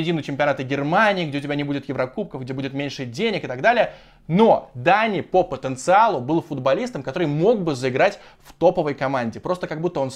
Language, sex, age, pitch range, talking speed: Russian, male, 20-39, 135-185 Hz, 190 wpm